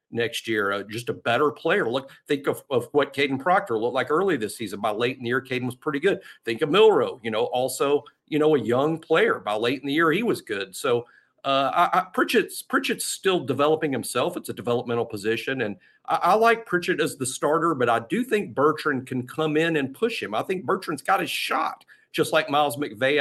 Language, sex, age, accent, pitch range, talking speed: English, male, 50-69, American, 120-150 Hz, 230 wpm